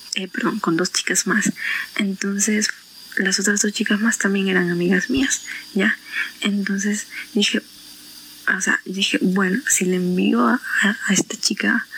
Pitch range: 195-230 Hz